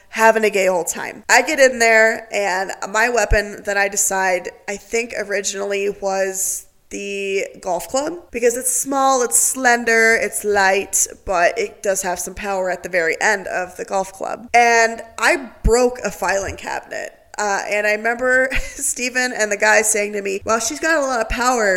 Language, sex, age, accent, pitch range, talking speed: English, female, 20-39, American, 205-245 Hz, 185 wpm